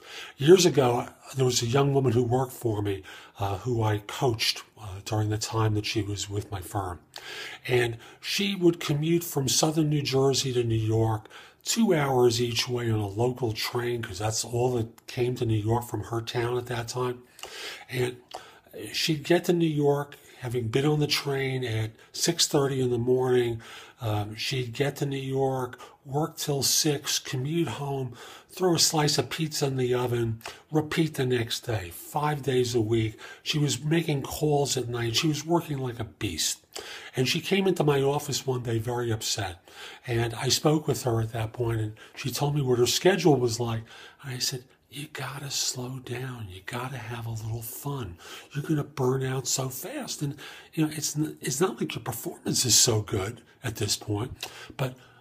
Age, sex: 50-69, male